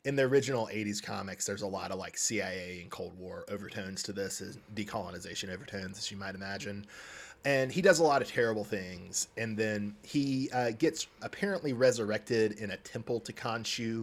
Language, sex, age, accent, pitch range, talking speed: English, male, 30-49, American, 100-120 Hz, 190 wpm